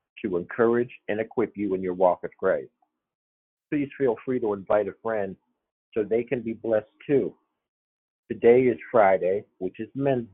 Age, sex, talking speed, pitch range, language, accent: 50-69, male, 170 wpm, 95-120 Hz, English, American